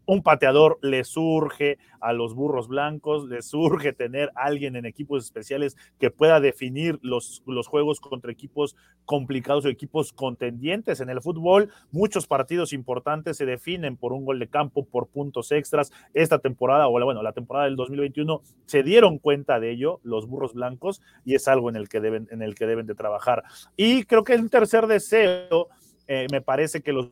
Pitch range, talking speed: 125-155 Hz, 190 wpm